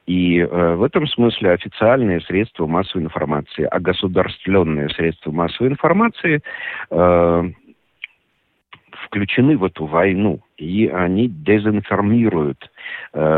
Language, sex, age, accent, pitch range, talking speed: Russian, male, 50-69, native, 85-130 Hz, 105 wpm